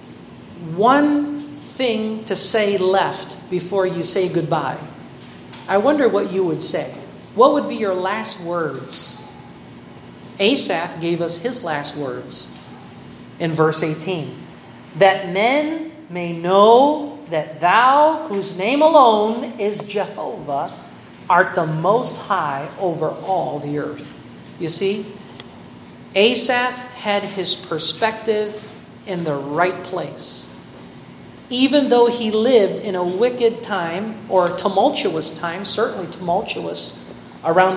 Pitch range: 165-205 Hz